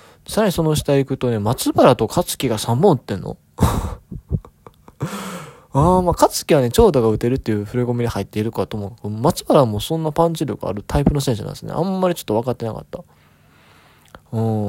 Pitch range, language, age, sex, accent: 110-160 Hz, Japanese, 20-39, male, native